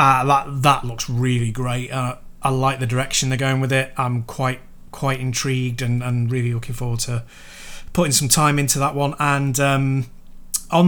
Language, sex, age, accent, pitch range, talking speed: English, male, 30-49, British, 125-155 Hz, 190 wpm